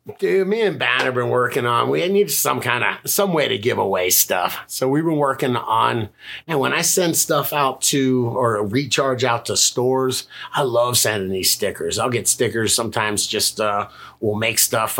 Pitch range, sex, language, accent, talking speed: 115-140 Hz, male, English, American, 200 wpm